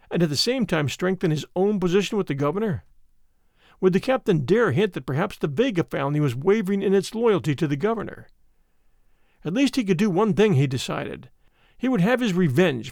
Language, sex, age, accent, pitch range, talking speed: English, male, 50-69, American, 150-210 Hz, 205 wpm